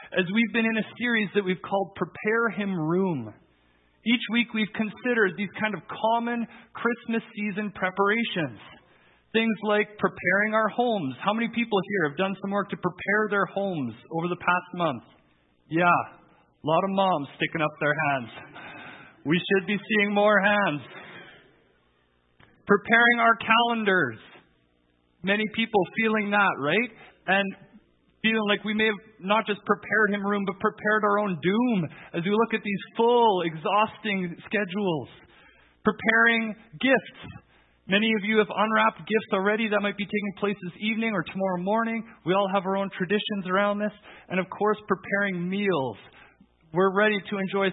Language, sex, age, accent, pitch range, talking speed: English, male, 40-59, American, 175-215 Hz, 160 wpm